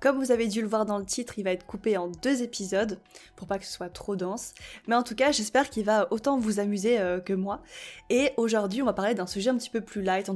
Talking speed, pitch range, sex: 285 wpm, 195-240 Hz, female